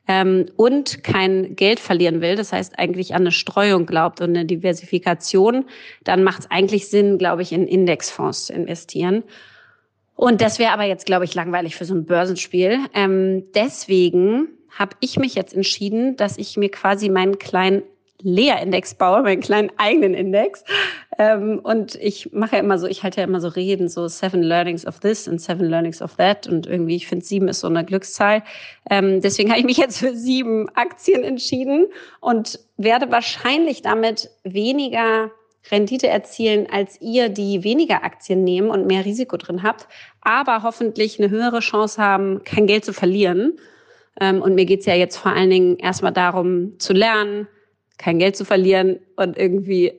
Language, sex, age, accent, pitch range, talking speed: German, female, 30-49, German, 185-225 Hz, 175 wpm